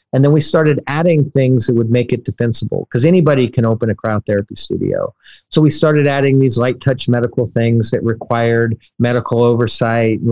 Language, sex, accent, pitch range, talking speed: English, male, American, 110-130 Hz, 185 wpm